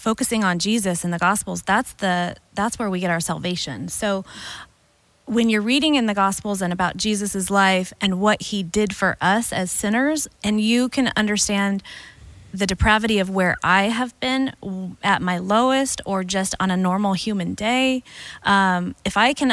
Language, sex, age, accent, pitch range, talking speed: English, female, 20-39, American, 185-225 Hz, 175 wpm